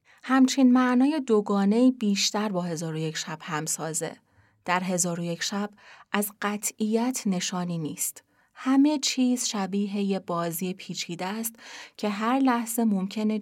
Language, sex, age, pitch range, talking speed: Persian, female, 30-49, 185-225 Hz, 135 wpm